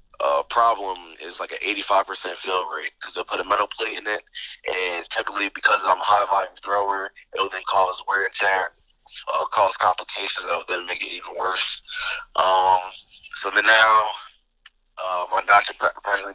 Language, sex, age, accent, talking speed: English, male, 20-39, American, 180 wpm